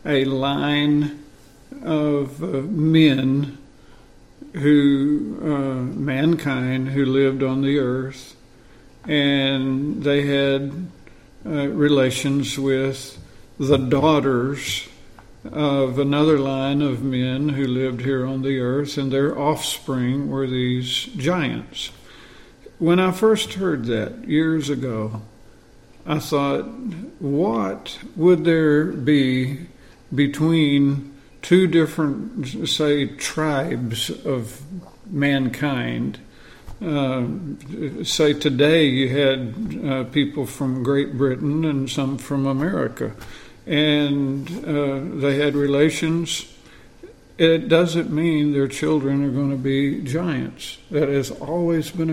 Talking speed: 105 wpm